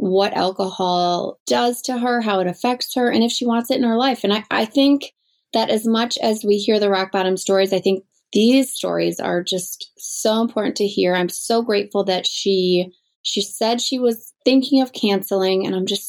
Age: 20-39